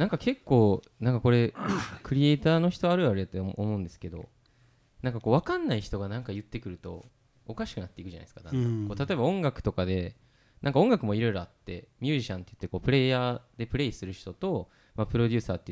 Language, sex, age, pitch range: Japanese, male, 20-39, 95-130 Hz